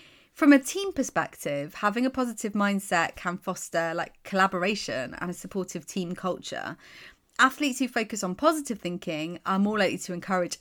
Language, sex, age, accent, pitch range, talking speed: English, female, 30-49, British, 175-240 Hz, 160 wpm